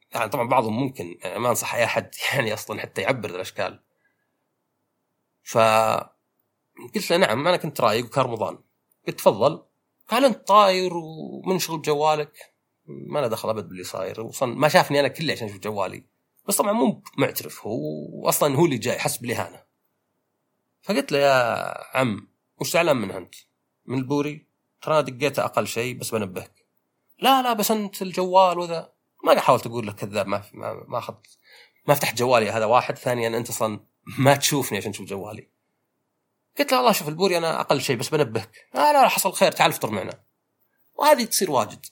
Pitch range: 115-180 Hz